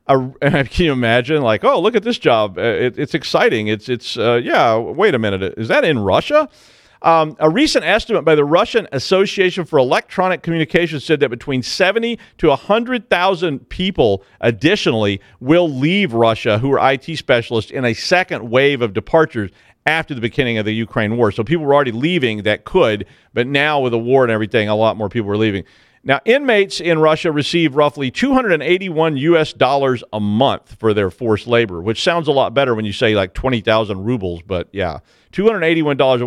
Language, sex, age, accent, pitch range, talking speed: English, male, 40-59, American, 115-170 Hz, 190 wpm